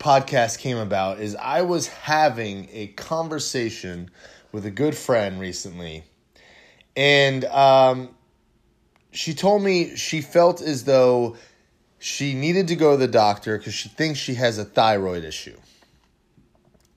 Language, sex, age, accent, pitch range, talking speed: English, male, 20-39, American, 105-145 Hz, 135 wpm